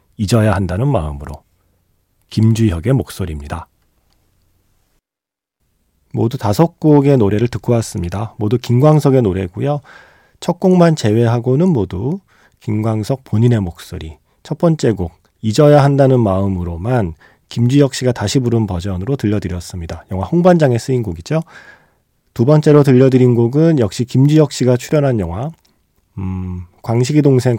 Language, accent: Korean, native